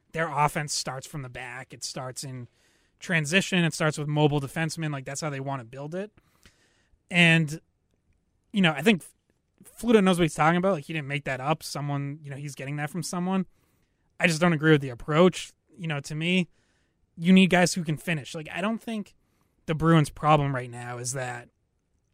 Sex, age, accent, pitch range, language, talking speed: male, 20-39, American, 130-170 Hz, English, 205 wpm